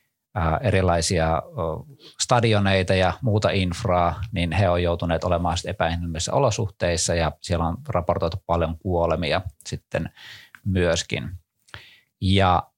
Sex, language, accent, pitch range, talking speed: male, Finnish, native, 85-105 Hz, 100 wpm